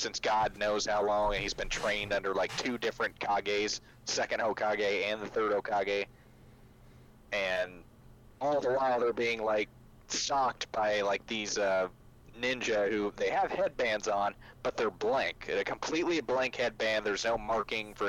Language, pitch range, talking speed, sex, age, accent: English, 105-160 Hz, 165 wpm, male, 30-49, American